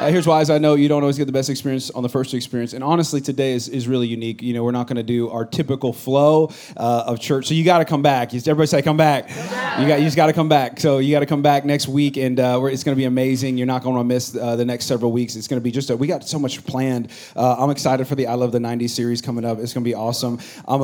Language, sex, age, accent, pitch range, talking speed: English, male, 30-49, American, 125-160 Hz, 315 wpm